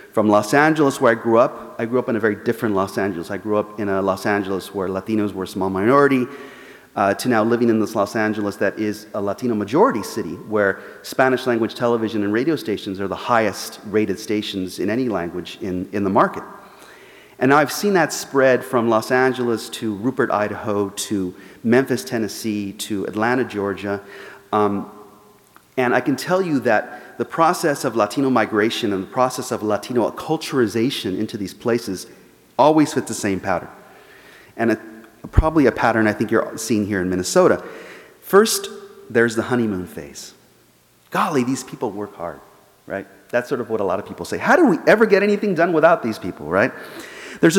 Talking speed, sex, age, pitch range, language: 185 wpm, male, 30-49, 105-130 Hz, English